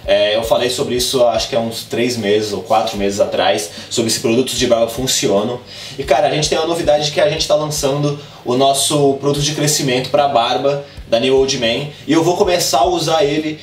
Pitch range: 135-165 Hz